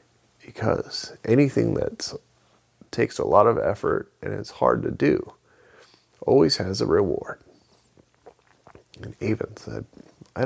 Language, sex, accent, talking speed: English, male, American, 120 wpm